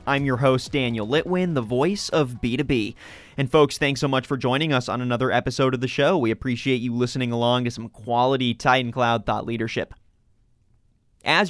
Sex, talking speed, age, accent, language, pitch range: male, 190 wpm, 30-49, American, English, 120-155 Hz